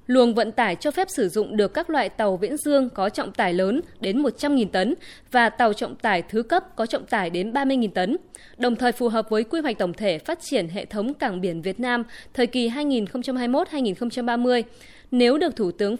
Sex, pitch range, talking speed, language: female, 215-275 Hz, 210 wpm, Vietnamese